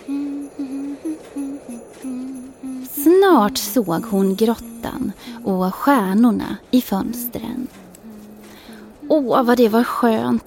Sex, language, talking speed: female, Swedish, 80 wpm